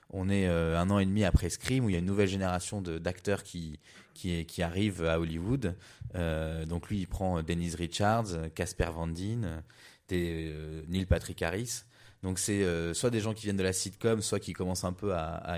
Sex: male